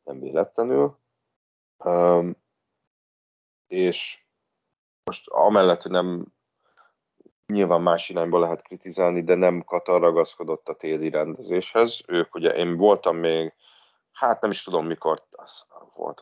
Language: Hungarian